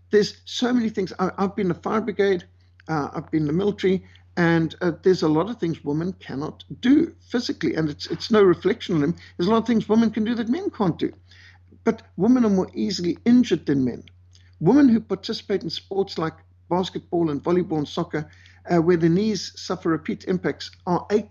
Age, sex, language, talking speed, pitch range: 60-79, male, English, 205 wpm, 145-200 Hz